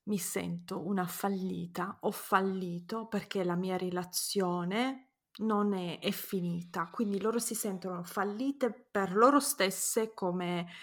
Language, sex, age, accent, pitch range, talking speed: Italian, female, 30-49, native, 185-230 Hz, 125 wpm